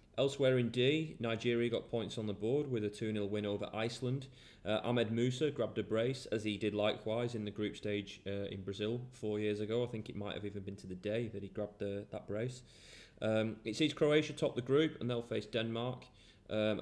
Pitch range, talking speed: 100-120 Hz, 225 wpm